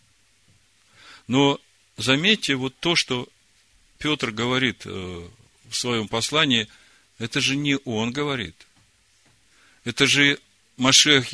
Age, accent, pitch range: 50-69, native, 100-135 Hz